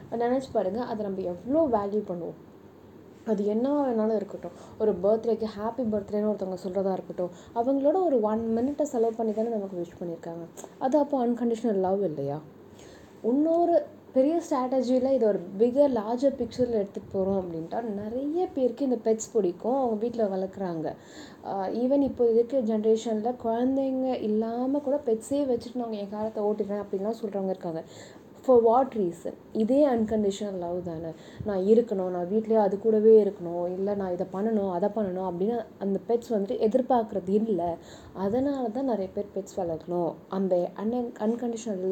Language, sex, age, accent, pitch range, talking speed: Tamil, female, 20-39, native, 195-245 Hz, 145 wpm